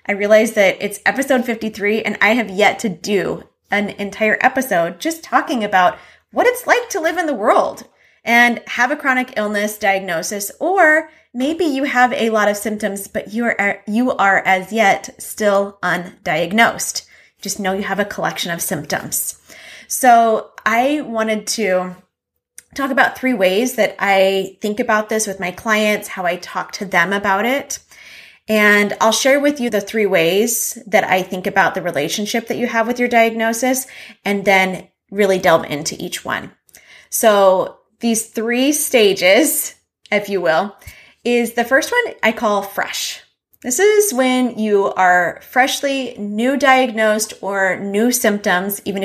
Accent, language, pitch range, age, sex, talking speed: American, English, 195-245 Hz, 20-39, female, 165 wpm